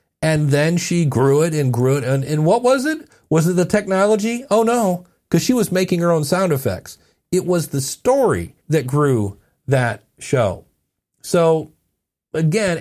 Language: English